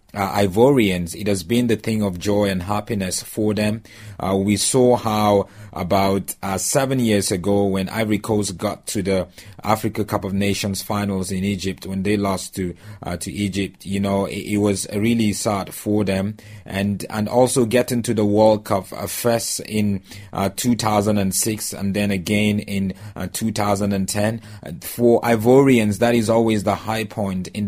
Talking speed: 170 wpm